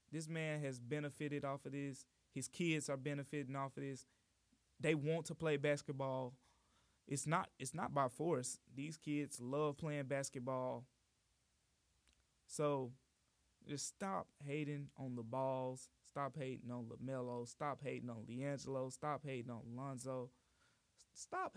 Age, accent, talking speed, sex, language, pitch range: 20-39, American, 140 wpm, male, English, 125-160 Hz